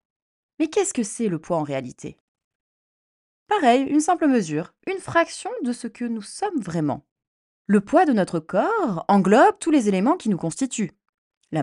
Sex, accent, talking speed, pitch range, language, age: female, French, 170 wpm, 180-300 Hz, French, 20-39